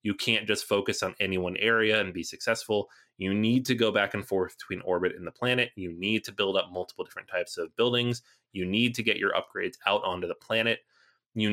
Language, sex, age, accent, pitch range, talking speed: English, male, 30-49, American, 105-140 Hz, 230 wpm